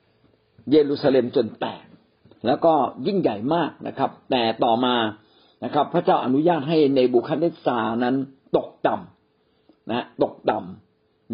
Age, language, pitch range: 60-79, Thai, 125-160 Hz